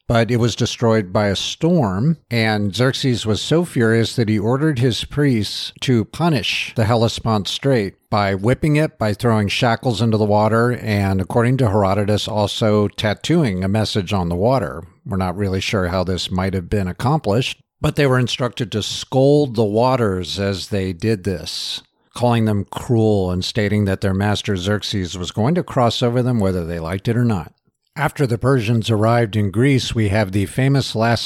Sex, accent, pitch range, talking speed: male, American, 100-125 Hz, 185 wpm